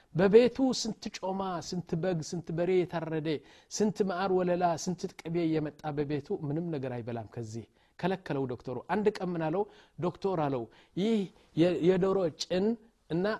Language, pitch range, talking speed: Amharic, 140-185 Hz, 110 wpm